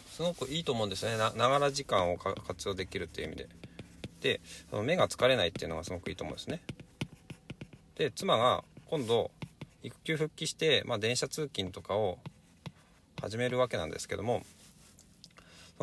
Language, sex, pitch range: Japanese, male, 90-125 Hz